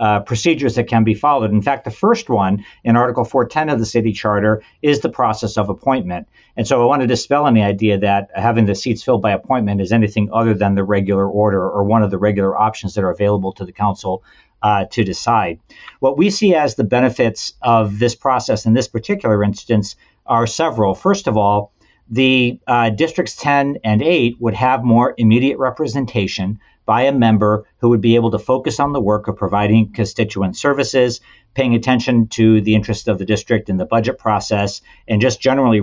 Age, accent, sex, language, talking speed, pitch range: 50-69, American, male, English, 205 wpm, 105-125 Hz